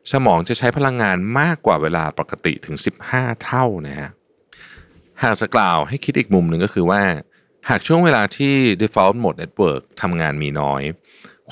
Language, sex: Thai, male